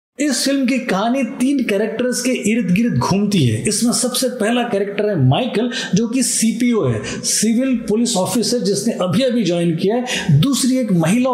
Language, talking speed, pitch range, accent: Hindi, 175 wpm, 200-245 Hz, native